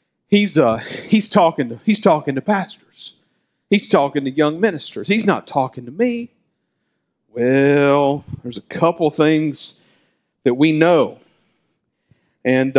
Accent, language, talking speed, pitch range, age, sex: American, English, 115 wpm, 130-170 Hz, 50-69, male